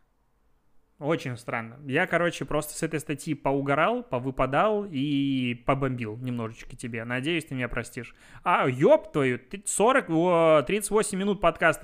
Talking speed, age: 125 wpm, 20-39